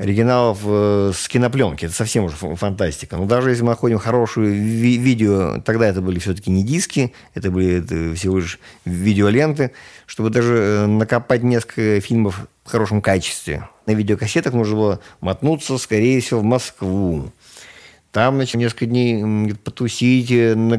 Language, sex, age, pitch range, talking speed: Russian, male, 50-69, 95-125 Hz, 140 wpm